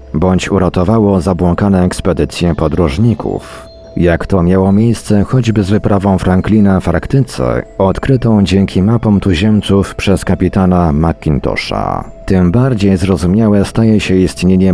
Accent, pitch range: native, 85-105 Hz